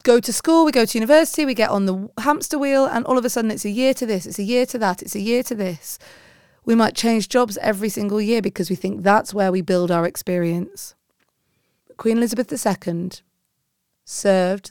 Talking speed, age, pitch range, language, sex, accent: 215 wpm, 30-49, 180-220 Hz, English, female, British